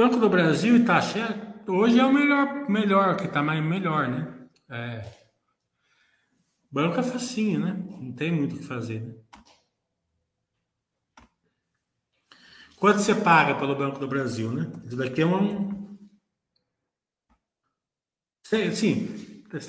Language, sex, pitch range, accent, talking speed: Portuguese, male, 130-190 Hz, Brazilian, 120 wpm